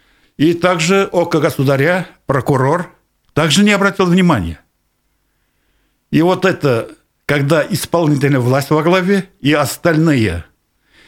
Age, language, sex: 60-79, Russian, male